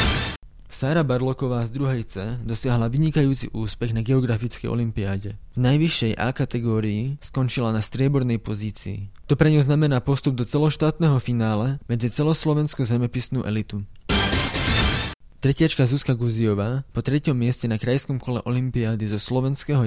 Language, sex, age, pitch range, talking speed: Slovak, male, 20-39, 110-135 Hz, 130 wpm